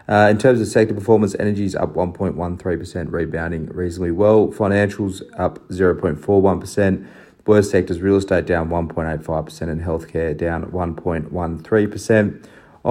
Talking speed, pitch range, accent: 120 wpm, 85-105 Hz, Australian